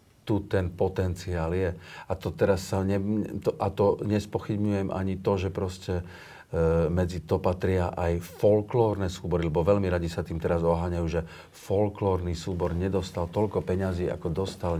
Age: 50-69